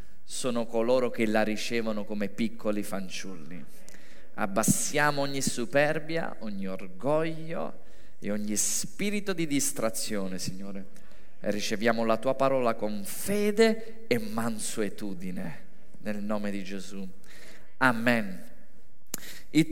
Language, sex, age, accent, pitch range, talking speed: Italian, male, 30-49, native, 145-205 Hz, 105 wpm